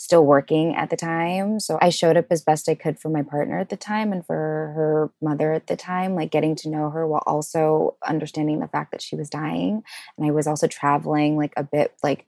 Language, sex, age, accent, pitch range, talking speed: English, female, 20-39, American, 150-180 Hz, 240 wpm